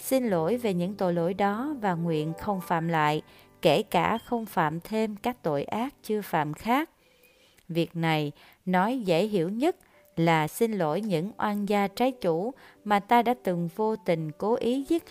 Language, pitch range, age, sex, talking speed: Vietnamese, 165-225 Hz, 30-49, female, 185 wpm